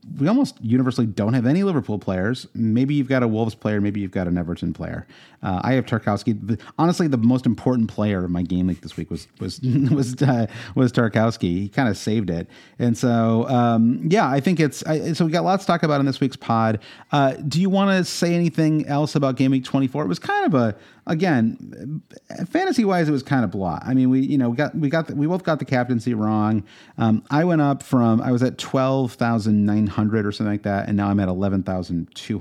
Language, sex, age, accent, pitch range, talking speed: English, male, 30-49, American, 100-145 Hz, 235 wpm